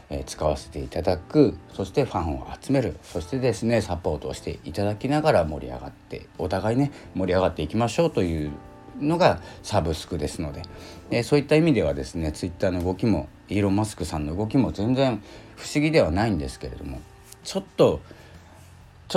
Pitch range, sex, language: 85-115 Hz, male, Japanese